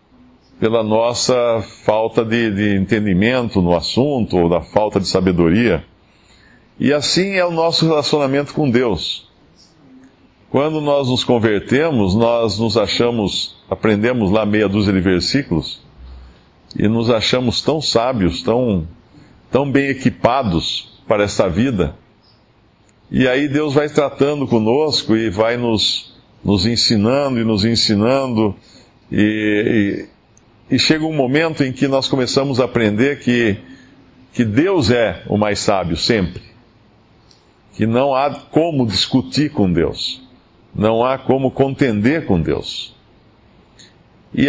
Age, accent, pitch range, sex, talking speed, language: 50-69, Brazilian, 105-135 Hz, male, 125 wpm, Portuguese